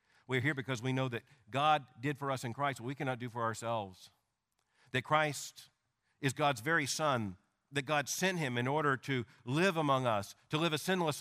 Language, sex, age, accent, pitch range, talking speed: English, male, 50-69, American, 115-160 Hz, 205 wpm